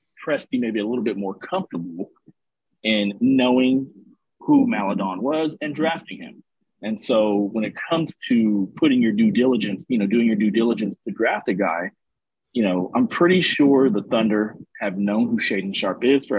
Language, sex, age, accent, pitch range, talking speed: English, male, 40-59, American, 105-140 Hz, 185 wpm